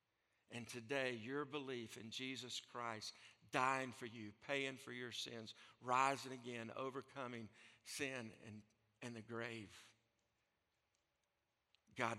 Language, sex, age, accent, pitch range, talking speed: English, male, 60-79, American, 115-160 Hz, 115 wpm